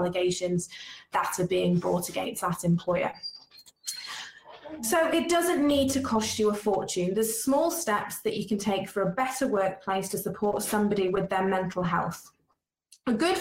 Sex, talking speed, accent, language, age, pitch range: female, 170 wpm, British, English, 20-39, 195-245 Hz